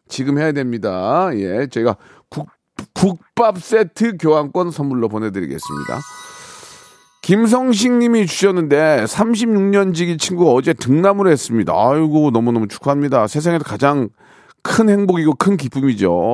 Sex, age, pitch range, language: male, 40-59, 125-195 Hz, Korean